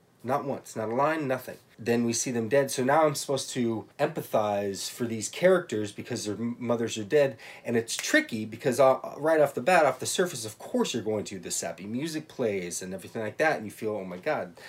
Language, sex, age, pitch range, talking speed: English, male, 30-49, 110-145 Hz, 225 wpm